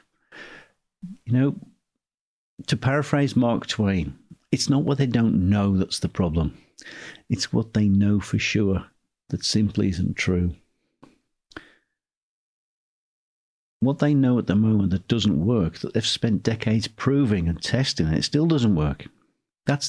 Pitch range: 100-130 Hz